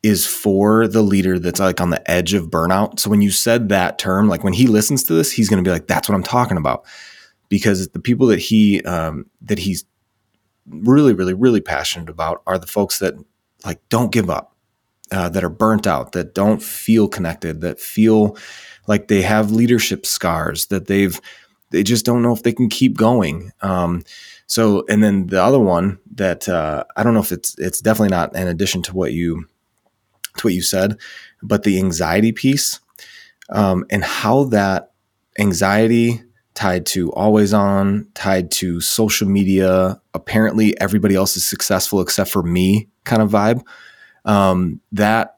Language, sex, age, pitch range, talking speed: English, male, 20-39, 95-110 Hz, 180 wpm